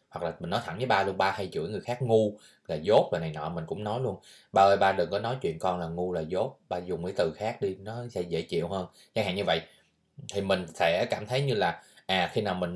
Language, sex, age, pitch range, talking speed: Vietnamese, male, 20-39, 90-120 Hz, 285 wpm